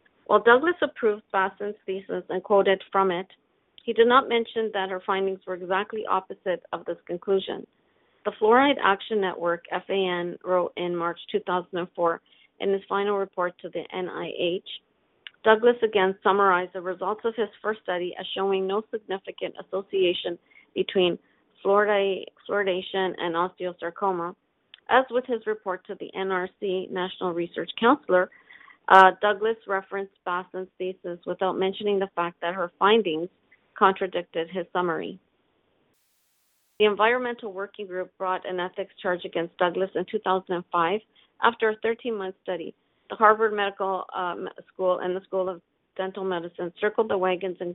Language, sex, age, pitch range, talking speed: English, female, 40-59, 180-205 Hz, 140 wpm